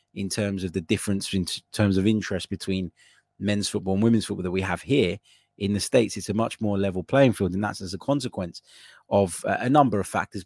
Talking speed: 225 wpm